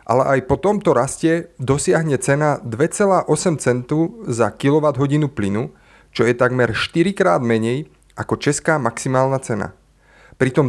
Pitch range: 120-150 Hz